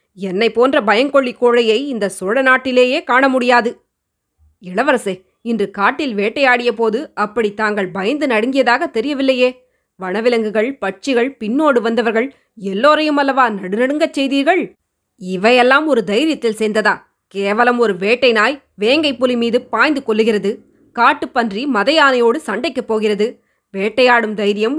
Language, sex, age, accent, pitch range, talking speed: Tamil, female, 20-39, native, 210-255 Hz, 110 wpm